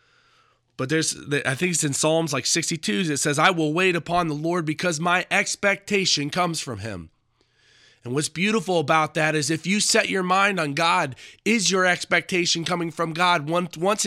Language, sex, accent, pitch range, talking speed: English, male, American, 130-185 Hz, 185 wpm